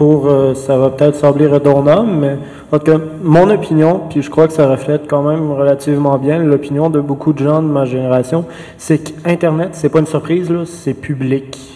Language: French